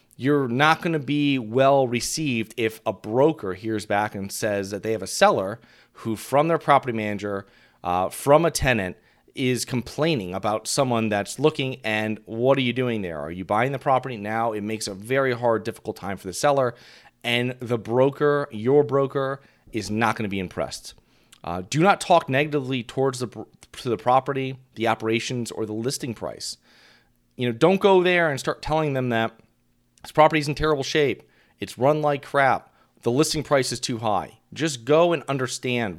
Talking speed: 180 wpm